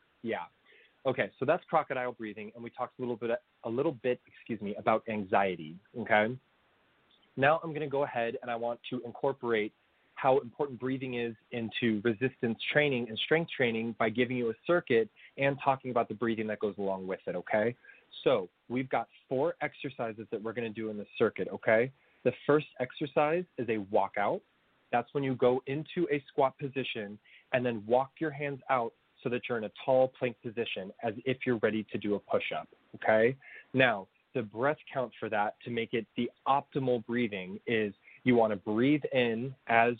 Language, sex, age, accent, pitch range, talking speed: English, male, 20-39, American, 115-135 Hz, 190 wpm